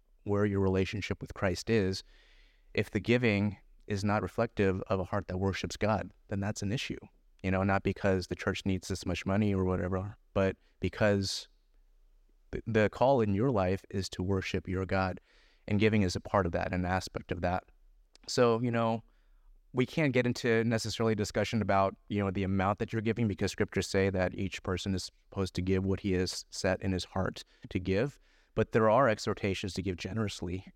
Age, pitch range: 30-49, 95-115 Hz